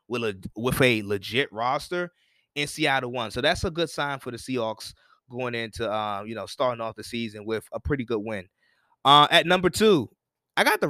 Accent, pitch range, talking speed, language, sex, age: American, 115-150 Hz, 210 wpm, English, male, 20-39